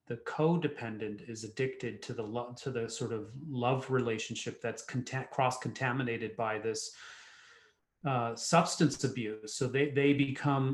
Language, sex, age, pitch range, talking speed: English, male, 30-49, 120-140 Hz, 140 wpm